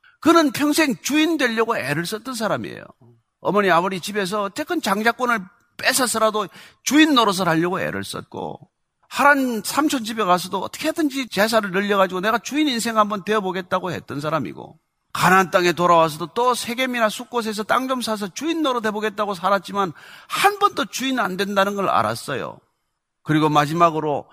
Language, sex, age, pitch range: Korean, male, 40-59, 165-235 Hz